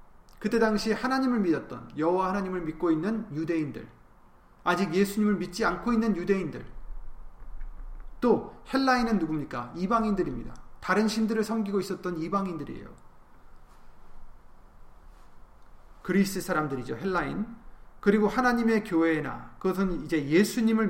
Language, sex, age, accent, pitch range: Korean, male, 30-49, native, 160-215 Hz